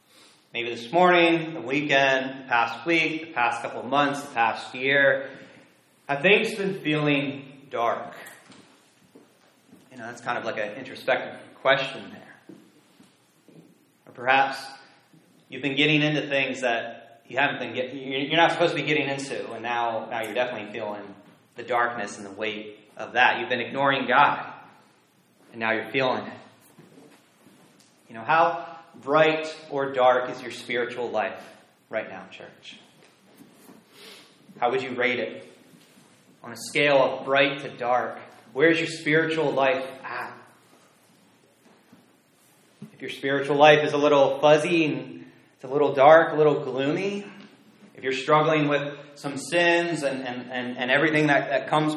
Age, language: 30-49, English